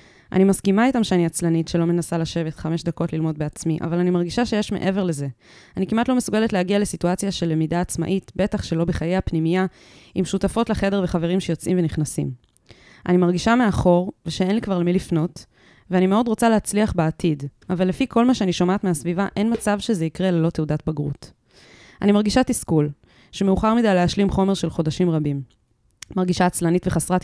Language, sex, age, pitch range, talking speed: Hebrew, female, 20-39, 170-205 Hz, 170 wpm